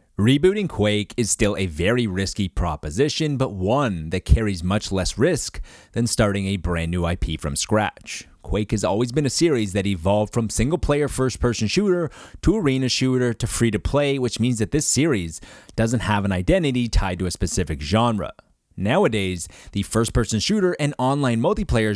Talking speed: 180 wpm